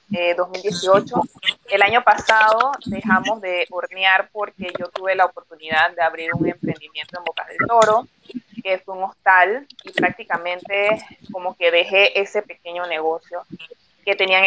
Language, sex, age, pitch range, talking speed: Spanish, female, 20-39, 175-210 Hz, 145 wpm